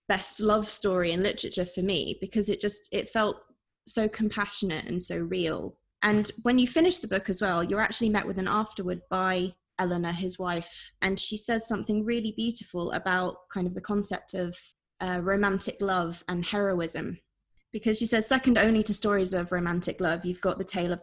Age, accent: 20-39, British